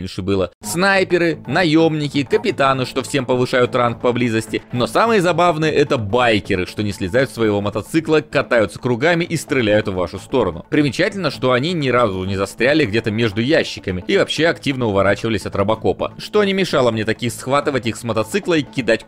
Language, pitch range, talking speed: Russian, 110-160 Hz, 170 wpm